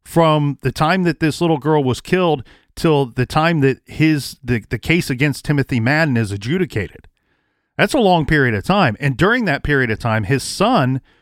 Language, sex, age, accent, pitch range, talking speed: English, male, 40-59, American, 120-155 Hz, 195 wpm